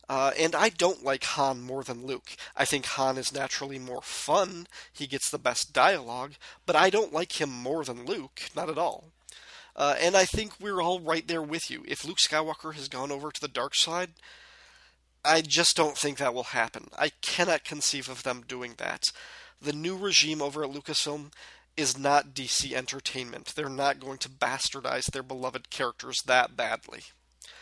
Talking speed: 185 wpm